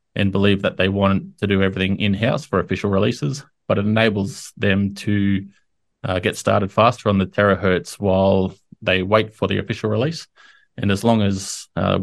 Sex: male